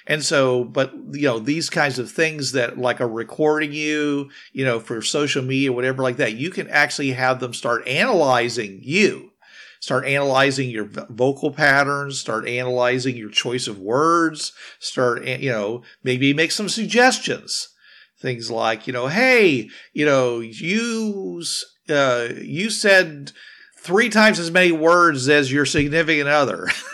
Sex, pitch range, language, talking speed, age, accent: male, 130-170 Hz, English, 150 wpm, 50-69, American